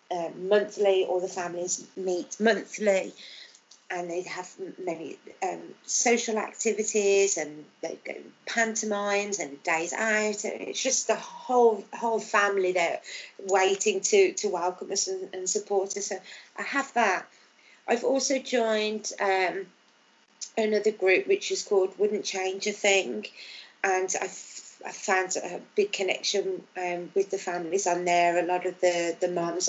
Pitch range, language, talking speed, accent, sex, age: 180-215 Hz, English, 150 wpm, British, female, 30-49